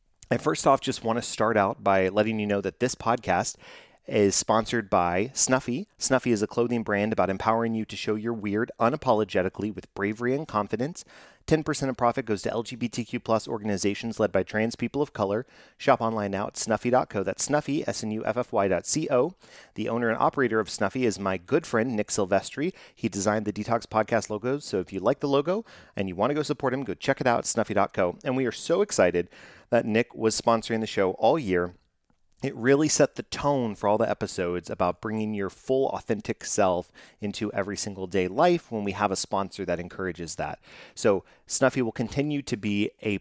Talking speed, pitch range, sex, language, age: 200 wpm, 100-125 Hz, male, English, 30-49